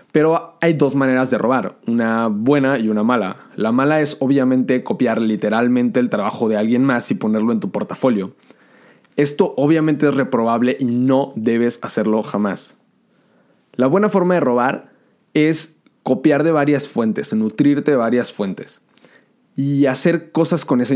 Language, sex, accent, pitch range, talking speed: Spanish, male, Mexican, 120-175 Hz, 155 wpm